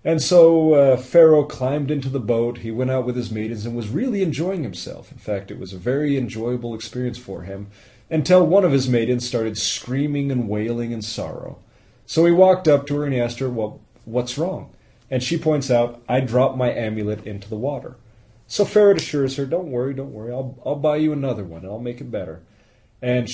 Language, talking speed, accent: English, 215 wpm, American